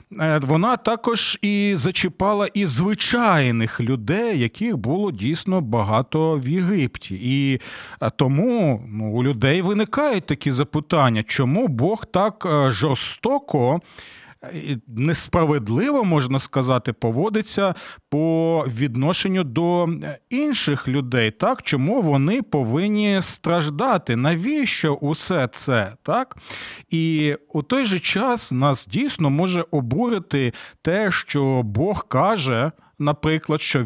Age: 40-59